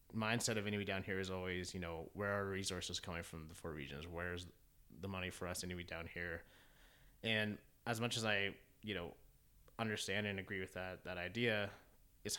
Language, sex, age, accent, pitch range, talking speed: English, male, 30-49, American, 90-110 Hz, 195 wpm